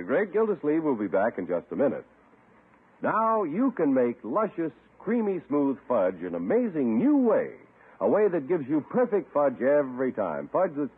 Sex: male